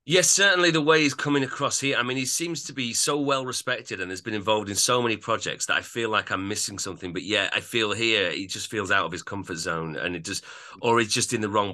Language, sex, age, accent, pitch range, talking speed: English, male, 30-49, British, 100-135 Hz, 275 wpm